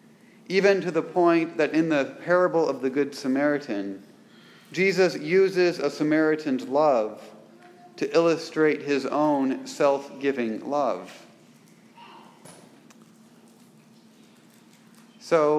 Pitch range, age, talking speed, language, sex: 140-195 Hz, 40-59, 95 wpm, English, male